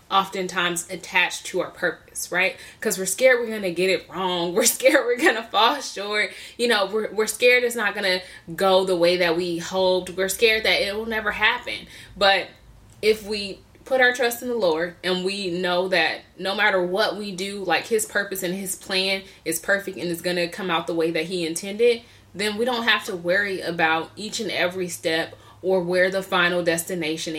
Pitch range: 175-215 Hz